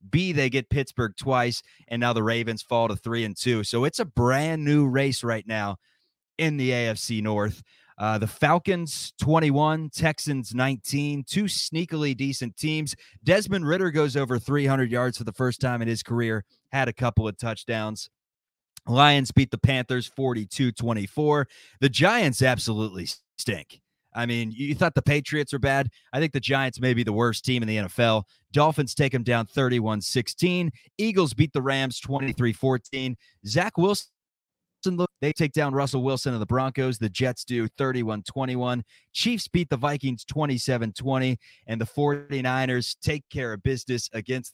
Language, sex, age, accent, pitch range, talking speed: English, male, 30-49, American, 115-145 Hz, 165 wpm